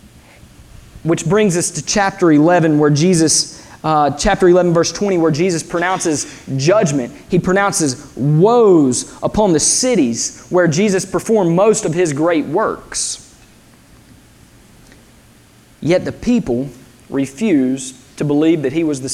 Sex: male